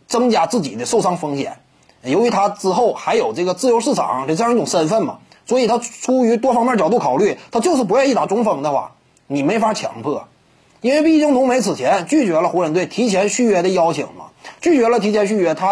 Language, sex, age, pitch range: Chinese, male, 30-49, 210-280 Hz